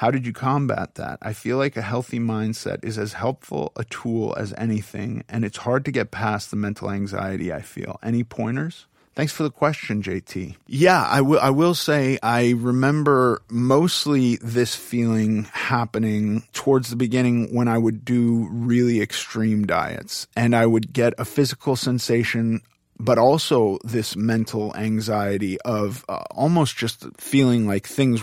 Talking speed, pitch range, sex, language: 165 wpm, 105-120 Hz, male, English